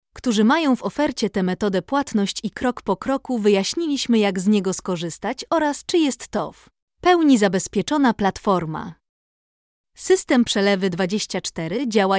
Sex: female